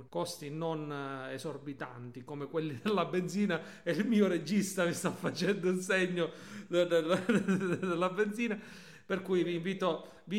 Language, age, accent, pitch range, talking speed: Italian, 40-59, native, 165-210 Hz, 135 wpm